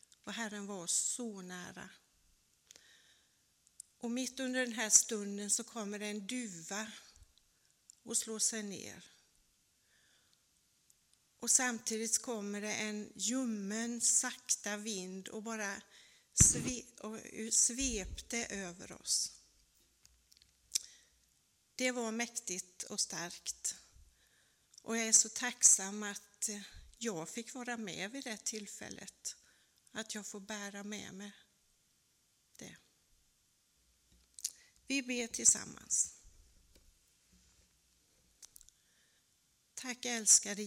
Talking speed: 95 wpm